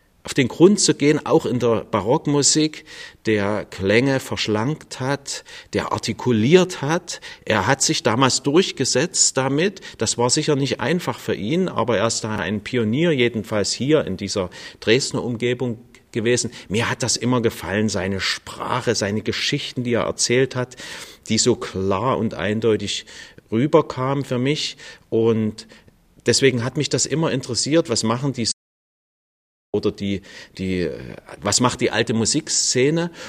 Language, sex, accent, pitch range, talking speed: German, male, German, 105-135 Hz, 150 wpm